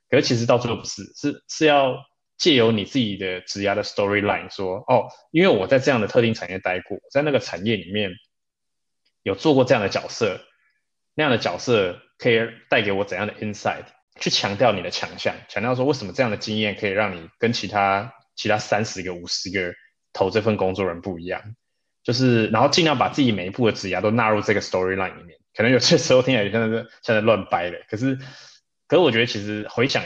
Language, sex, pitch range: Chinese, male, 100-125 Hz